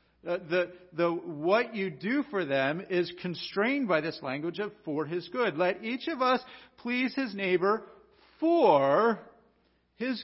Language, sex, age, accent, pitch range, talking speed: English, male, 50-69, American, 125-200 Hz, 150 wpm